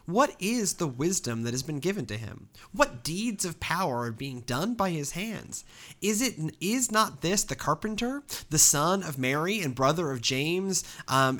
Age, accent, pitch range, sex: 30-49, American, 125-170 Hz, male